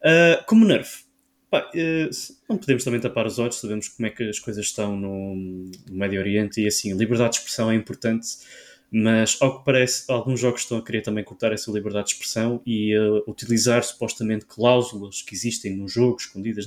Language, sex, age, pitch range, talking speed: Portuguese, male, 20-39, 110-140 Hz, 185 wpm